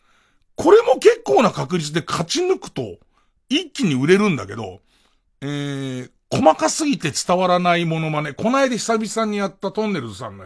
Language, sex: Japanese, male